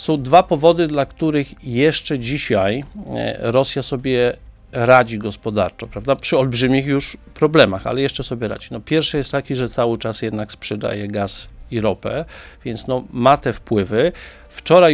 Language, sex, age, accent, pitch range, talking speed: Polish, male, 50-69, native, 115-140 Hz, 155 wpm